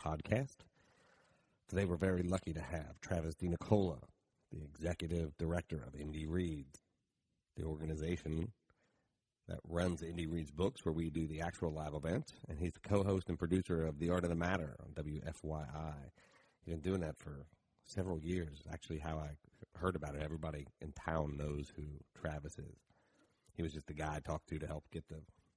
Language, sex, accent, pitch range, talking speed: English, male, American, 75-90 Hz, 175 wpm